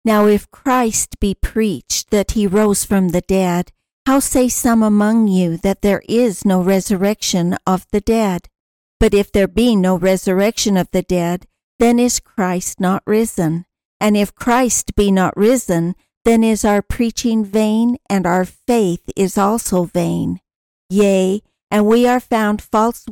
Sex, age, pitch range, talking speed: female, 60-79, 185-225 Hz, 160 wpm